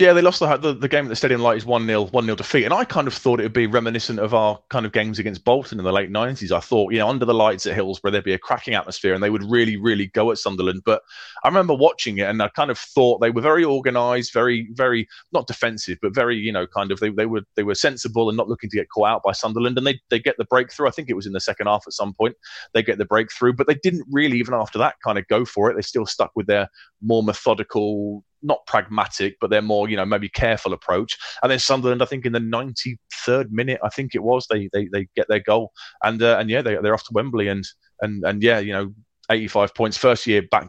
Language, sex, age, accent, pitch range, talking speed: English, male, 30-49, British, 105-125 Hz, 275 wpm